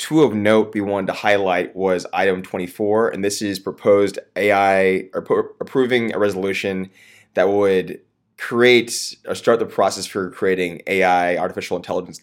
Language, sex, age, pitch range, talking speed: English, male, 20-39, 90-105 Hz, 145 wpm